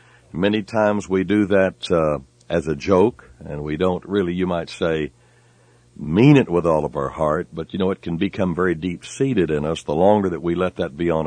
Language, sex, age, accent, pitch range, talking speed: English, male, 60-79, American, 90-120 Hz, 220 wpm